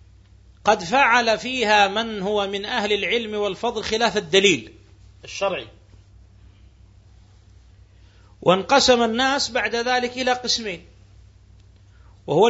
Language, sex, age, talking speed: Arabic, male, 40-59, 90 wpm